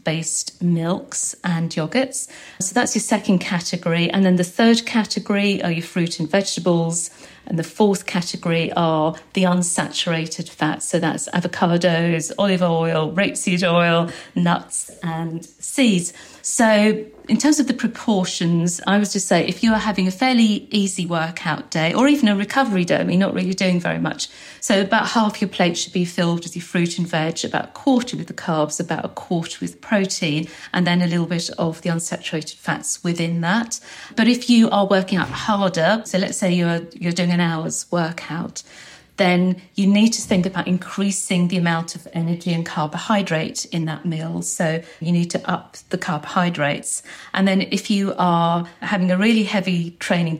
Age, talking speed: 40-59, 180 wpm